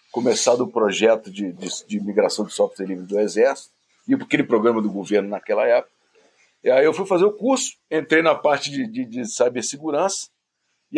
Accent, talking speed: Brazilian, 185 wpm